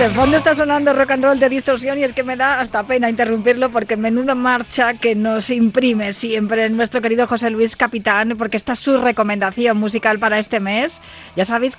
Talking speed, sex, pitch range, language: 205 wpm, female, 190-250 Hz, Spanish